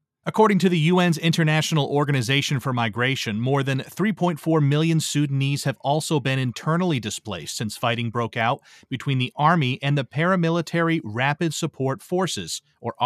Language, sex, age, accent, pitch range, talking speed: English, male, 30-49, American, 130-165 Hz, 145 wpm